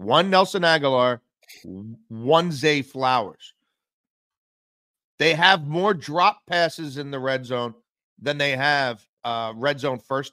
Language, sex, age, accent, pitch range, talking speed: English, male, 40-59, American, 120-155 Hz, 130 wpm